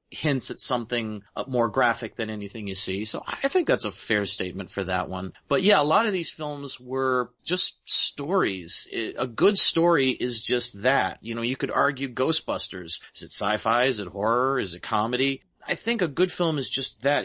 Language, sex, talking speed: English, male, 200 wpm